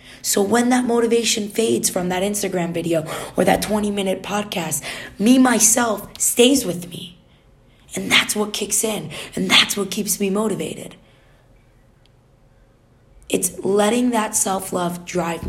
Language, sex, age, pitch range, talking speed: English, female, 20-39, 155-220 Hz, 135 wpm